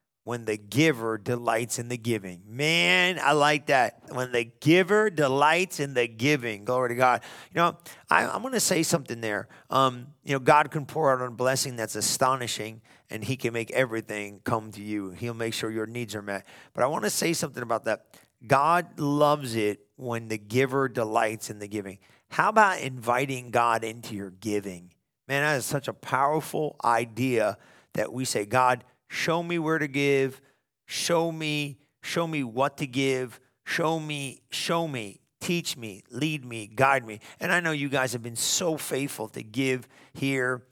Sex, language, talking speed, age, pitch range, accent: male, English, 185 wpm, 40-59, 115-145 Hz, American